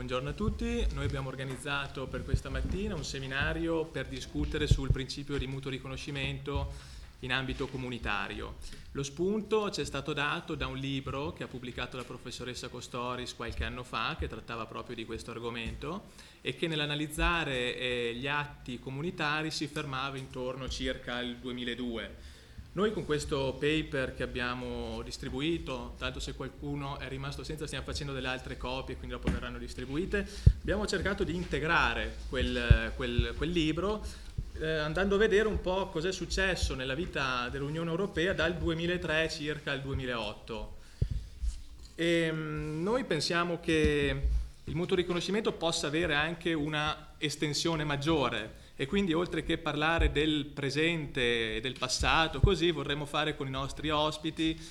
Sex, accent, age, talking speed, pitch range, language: male, native, 30-49, 145 wpm, 125-160 Hz, Italian